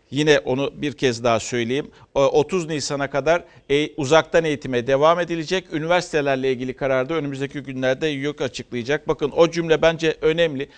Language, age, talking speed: Turkish, 50-69, 140 wpm